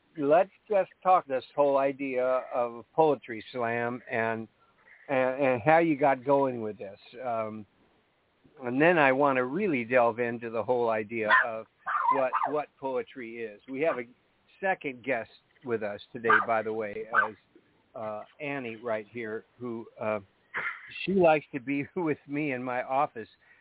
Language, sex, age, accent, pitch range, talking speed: English, male, 50-69, American, 115-150 Hz, 160 wpm